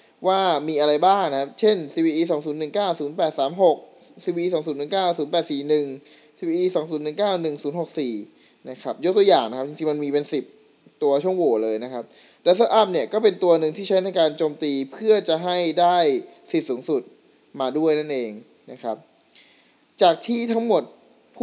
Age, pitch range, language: 20-39, 145-195 Hz, Thai